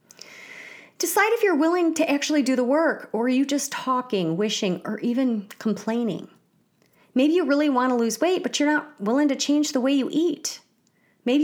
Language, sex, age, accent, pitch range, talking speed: English, female, 30-49, American, 195-290 Hz, 190 wpm